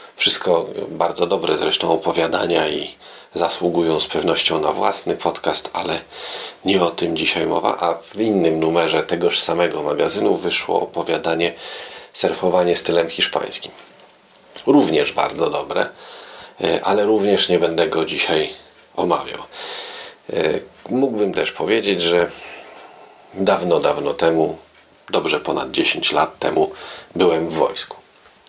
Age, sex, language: 40-59, male, Polish